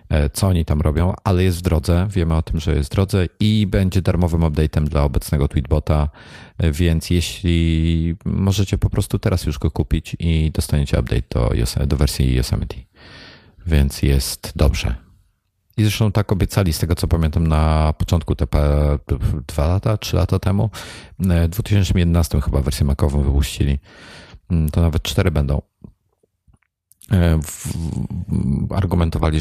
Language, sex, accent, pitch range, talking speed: Polish, male, native, 75-95 Hz, 135 wpm